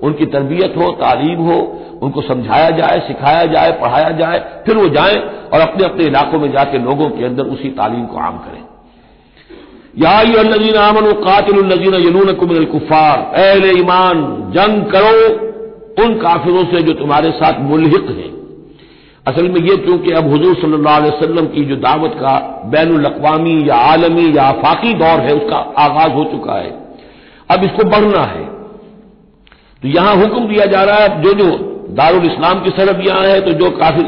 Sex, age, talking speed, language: male, 60-79, 160 wpm, Hindi